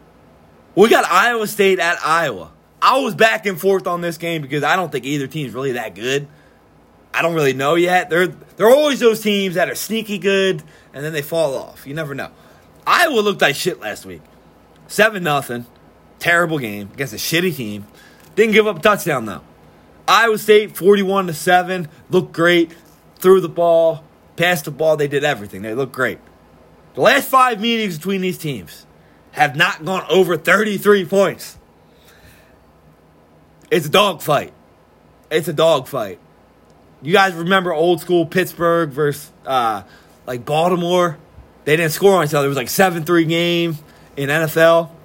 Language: English